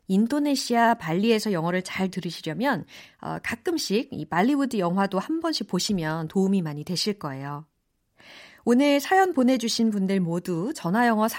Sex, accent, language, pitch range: female, native, Korean, 180-270 Hz